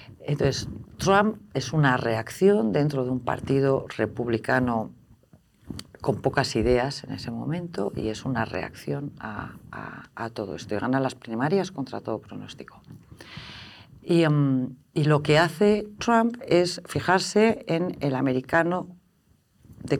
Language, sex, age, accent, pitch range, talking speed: Spanish, female, 40-59, Spanish, 120-170 Hz, 130 wpm